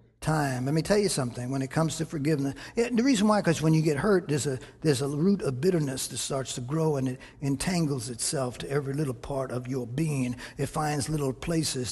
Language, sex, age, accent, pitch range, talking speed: English, male, 60-79, American, 125-205 Hz, 230 wpm